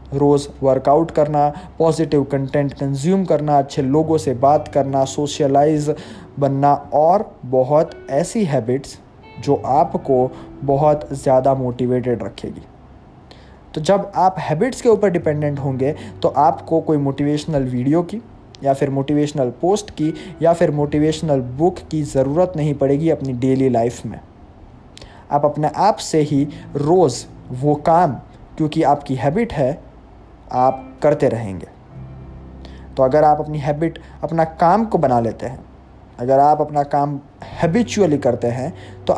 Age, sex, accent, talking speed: 20-39, male, native, 135 wpm